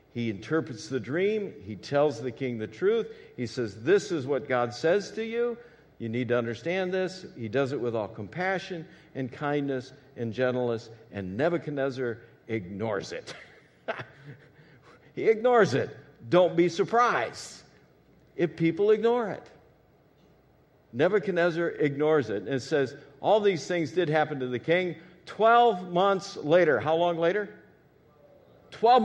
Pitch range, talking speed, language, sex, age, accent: 145-210 Hz, 140 wpm, English, male, 50-69, American